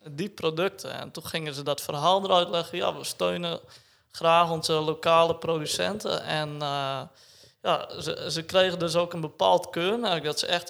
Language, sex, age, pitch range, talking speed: Dutch, male, 20-39, 145-165 Hz, 170 wpm